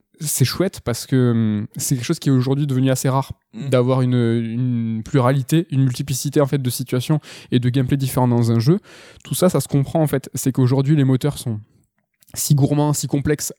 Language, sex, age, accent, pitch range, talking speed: French, male, 20-39, French, 125-150 Hz, 205 wpm